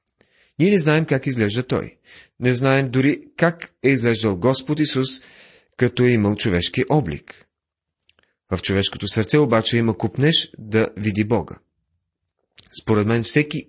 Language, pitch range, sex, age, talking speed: Bulgarian, 100-130 Hz, male, 30-49, 135 wpm